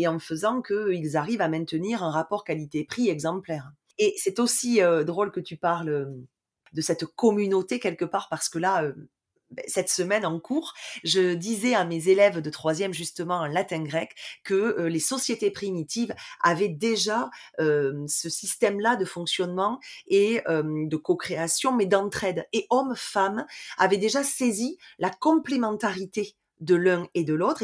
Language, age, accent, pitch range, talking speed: French, 30-49, French, 165-215 Hz, 160 wpm